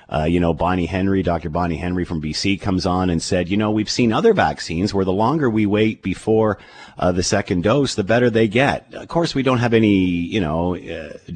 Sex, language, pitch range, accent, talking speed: male, English, 85-110 Hz, American, 225 wpm